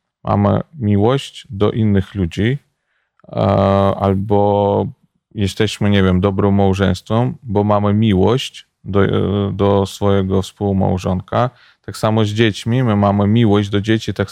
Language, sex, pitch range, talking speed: Polish, male, 95-110 Hz, 115 wpm